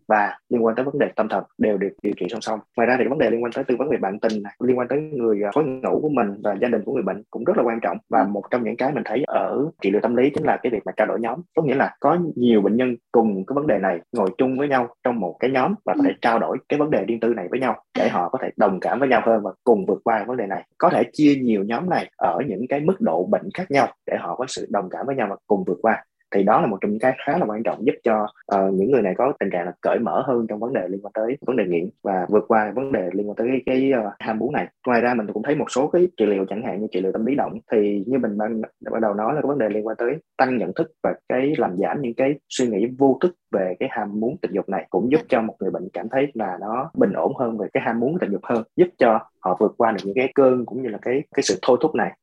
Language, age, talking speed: Vietnamese, 20-39, 320 wpm